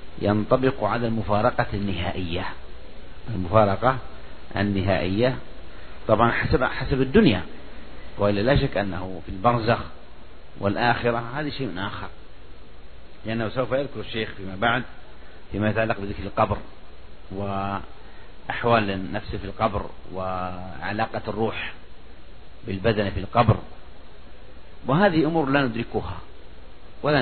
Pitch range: 90-120 Hz